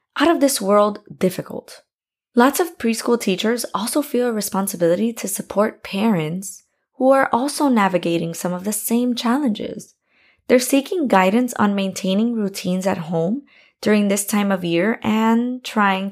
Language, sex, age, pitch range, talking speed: English, female, 20-39, 190-250 Hz, 150 wpm